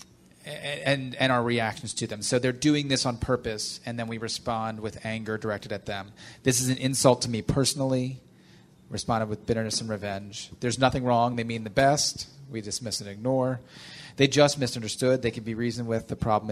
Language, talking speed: English, 195 wpm